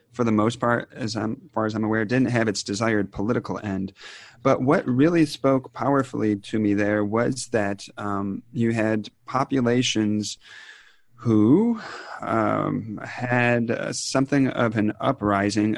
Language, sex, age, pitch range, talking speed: English, male, 30-49, 105-120 Hz, 140 wpm